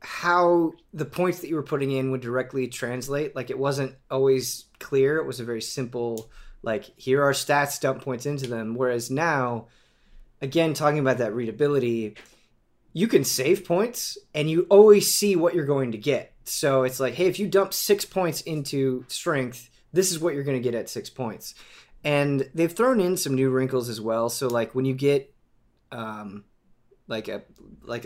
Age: 20-39